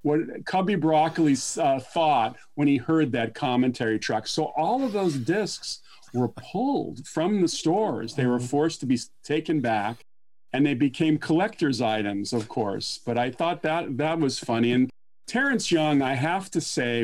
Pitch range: 120-155 Hz